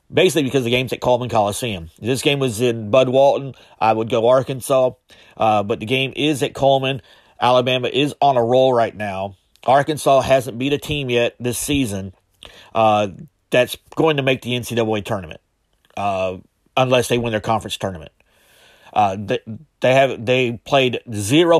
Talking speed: 170 wpm